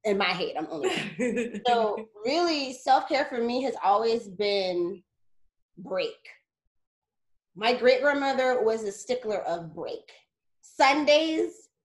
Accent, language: American, English